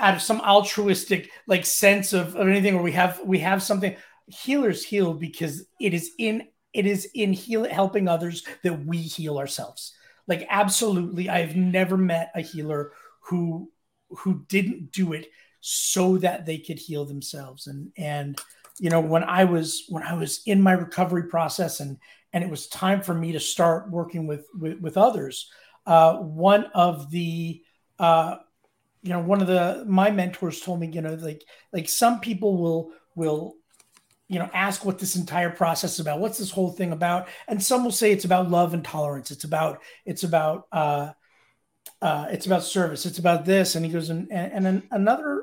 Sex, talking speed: male, 185 wpm